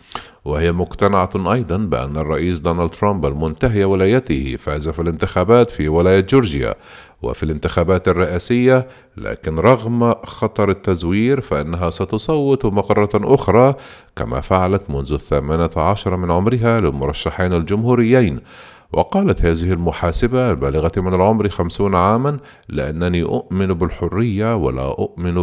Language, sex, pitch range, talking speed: Arabic, male, 80-110 Hz, 115 wpm